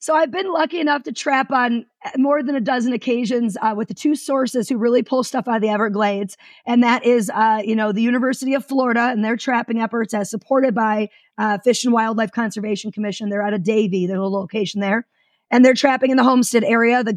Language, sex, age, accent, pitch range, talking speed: English, female, 30-49, American, 220-260 Hz, 225 wpm